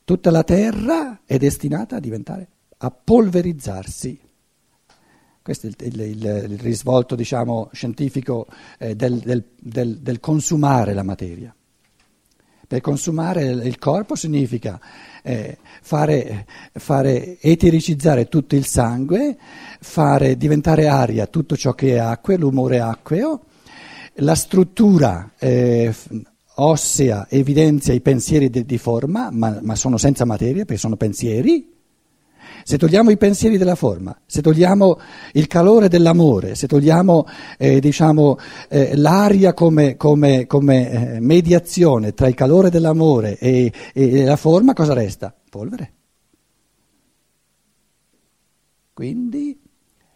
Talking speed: 115 wpm